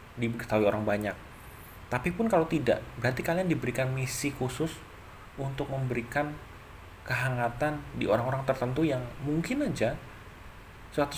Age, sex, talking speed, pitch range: 30-49, male, 120 wpm, 100-125 Hz